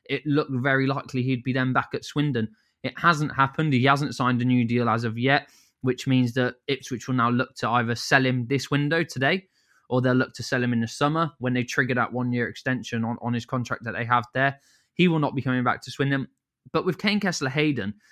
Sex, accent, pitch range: male, British, 120-140 Hz